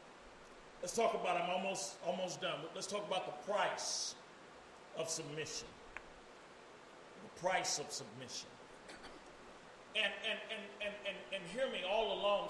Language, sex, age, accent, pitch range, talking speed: English, male, 40-59, American, 200-255 Hz, 140 wpm